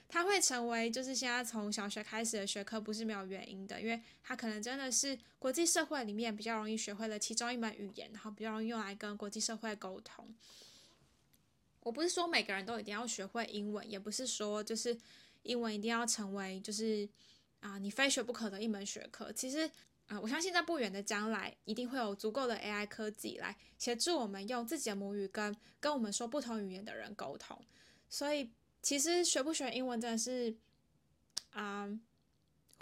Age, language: 10-29, Chinese